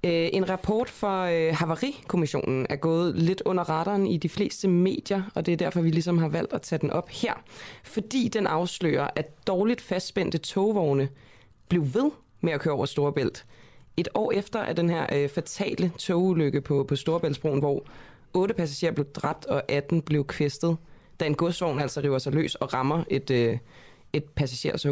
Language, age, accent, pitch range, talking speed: Danish, 20-39, native, 140-175 Hz, 180 wpm